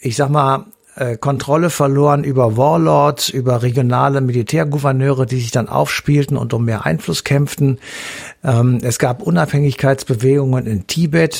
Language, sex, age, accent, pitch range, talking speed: German, male, 60-79, German, 120-140 Hz, 125 wpm